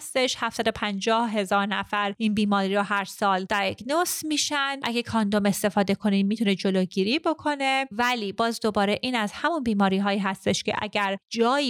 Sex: female